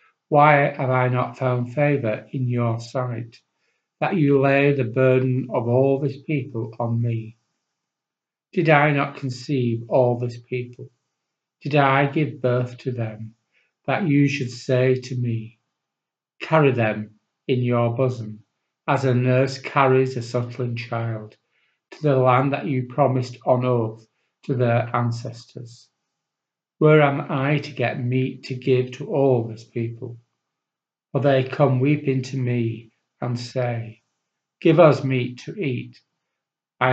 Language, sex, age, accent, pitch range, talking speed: English, male, 50-69, British, 120-135 Hz, 145 wpm